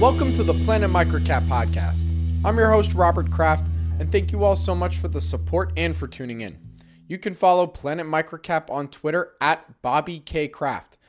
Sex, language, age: male, English, 20-39